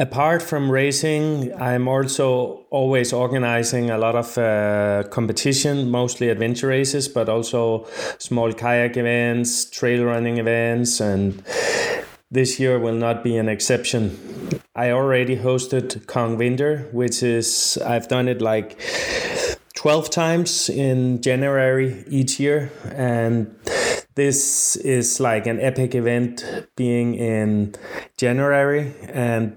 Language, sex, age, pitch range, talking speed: English, male, 20-39, 115-130 Hz, 120 wpm